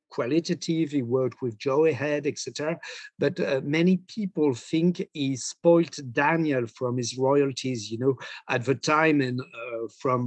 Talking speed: 150 wpm